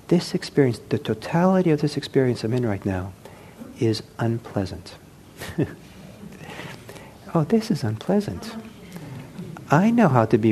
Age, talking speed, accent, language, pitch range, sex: 50-69, 125 wpm, American, English, 100-135 Hz, male